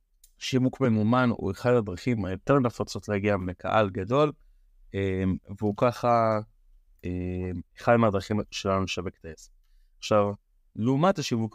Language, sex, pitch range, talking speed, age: Hebrew, male, 95-120 Hz, 110 wpm, 30-49